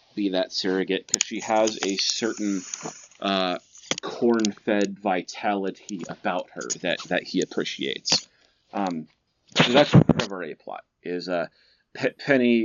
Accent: American